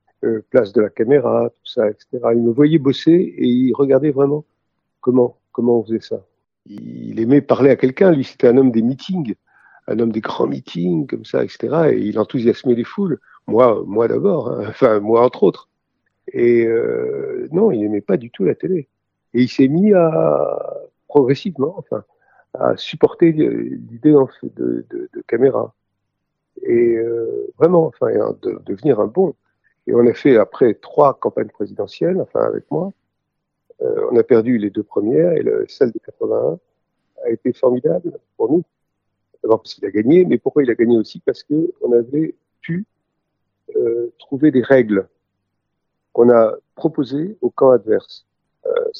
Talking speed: 175 wpm